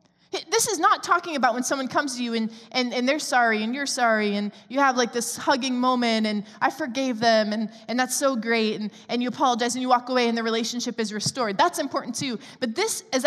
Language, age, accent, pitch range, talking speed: English, 20-39, American, 215-275 Hz, 240 wpm